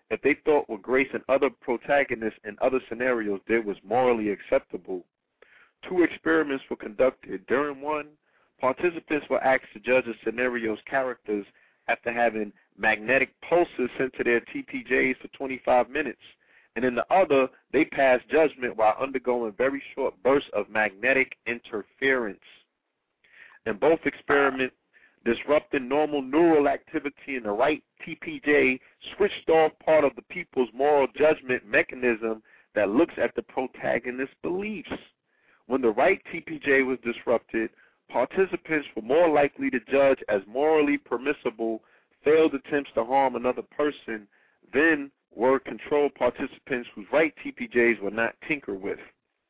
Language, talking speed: English, 140 wpm